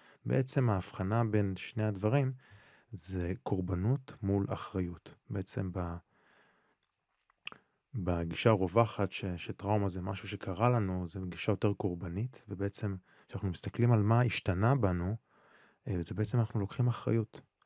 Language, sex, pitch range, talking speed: Hebrew, male, 90-110 Hz, 110 wpm